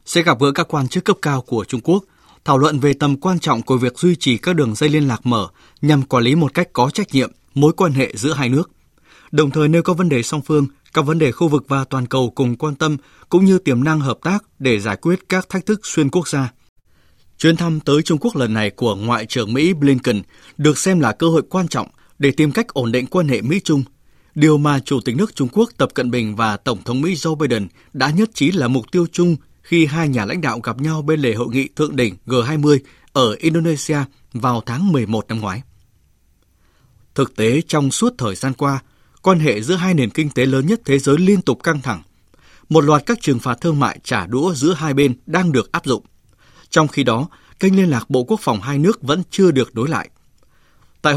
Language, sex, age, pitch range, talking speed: Vietnamese, male, 20-39, 125-165 Hz, 235 wpm